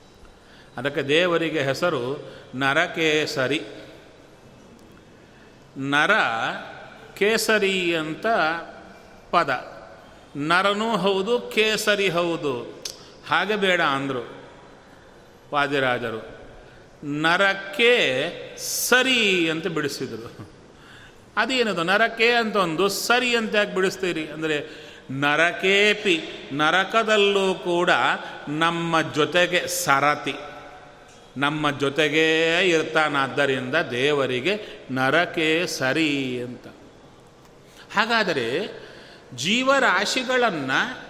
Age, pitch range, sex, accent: 40-59, 150-215 Hz, male, native